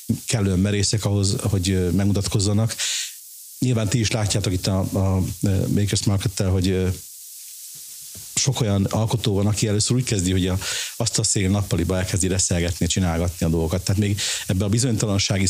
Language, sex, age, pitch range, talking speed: Hungarian, male, 50-69, 95-115 Hz, 155 wpm